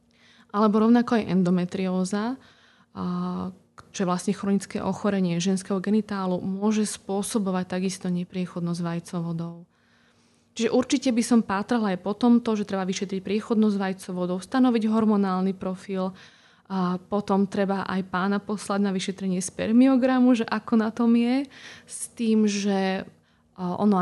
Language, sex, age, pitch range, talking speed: Slovak, female, 20-39, 185-210 Hz, 125 wpm